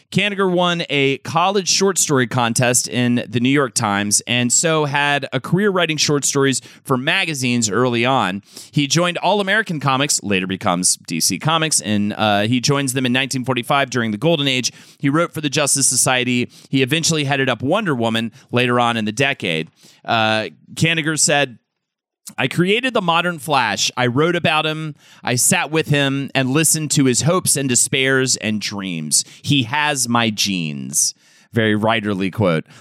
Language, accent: English, American